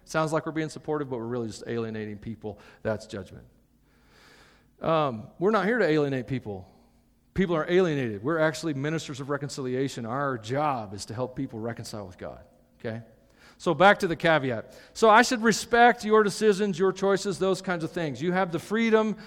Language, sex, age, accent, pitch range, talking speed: English, male, 40-59, American, 110-165 Hz, 185 wpm